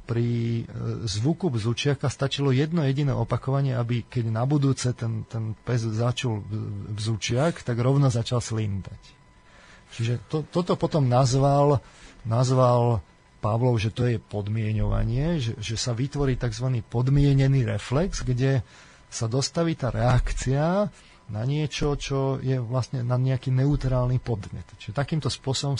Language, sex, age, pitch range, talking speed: Slovak, male, 30-49, 110-140 Hz, 130 wpm